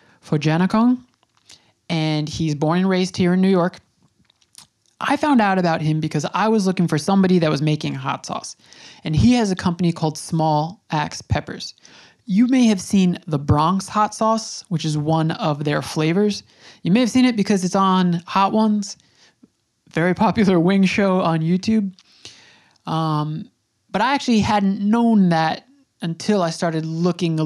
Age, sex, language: 20-39, male, English